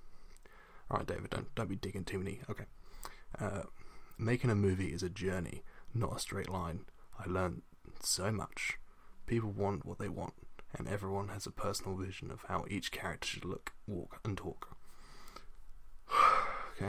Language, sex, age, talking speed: English, male, 20-39, 160 wpm